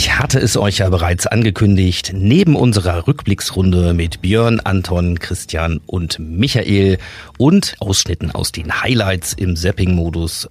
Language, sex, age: German, male, 50-69